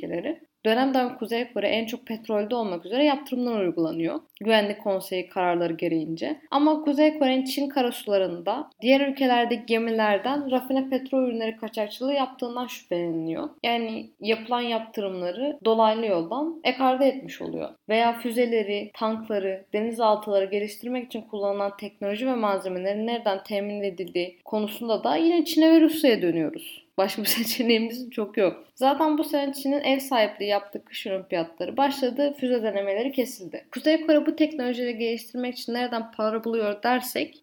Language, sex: Turkish, female